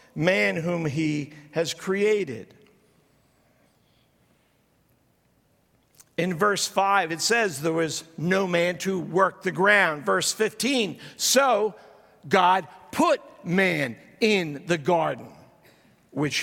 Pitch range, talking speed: 175-220 Hz, 100 wpm